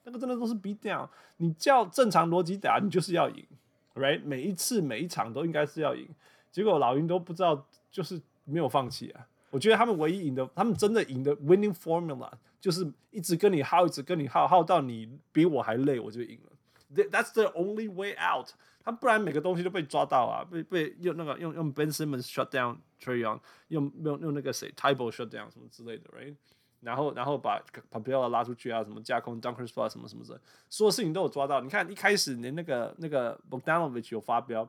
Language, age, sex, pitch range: Chinese, 20-39, male, 135-185 Hz